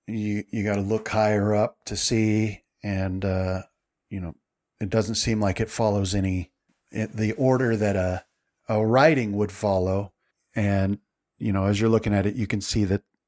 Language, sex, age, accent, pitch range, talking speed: English, male, 40-59, American, 100-115 Hz, 185 wpm